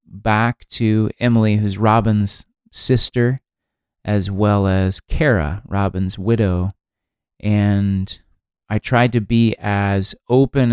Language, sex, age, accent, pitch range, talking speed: English, male, 30-49, American, 100-120 Hz, 105 wpm